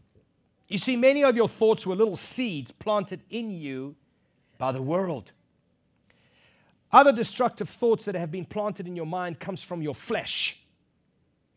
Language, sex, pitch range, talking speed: English, male, 150-220 Hz, 150 wpm